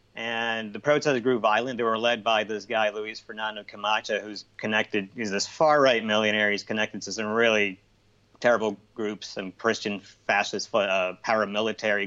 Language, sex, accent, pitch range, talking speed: English, male, American, 100-110 Hz, 160 wpm